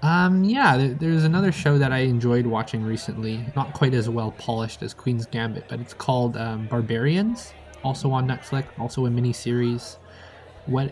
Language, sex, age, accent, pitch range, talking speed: English, male, 20-39, American, 115-140 Hz, 165 wpm